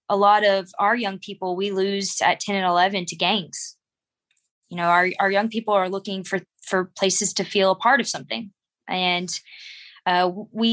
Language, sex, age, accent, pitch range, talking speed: English, female, 20-39, American, 185-225 Hz, 190 wpm